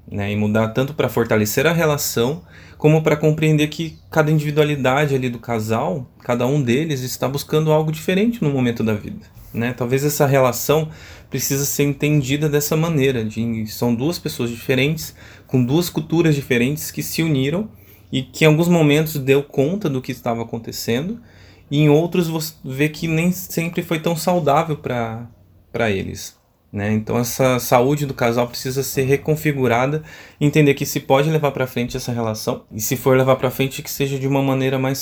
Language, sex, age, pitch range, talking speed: Portuguese, male, 20-39, 115-145 Hz, 175 wpm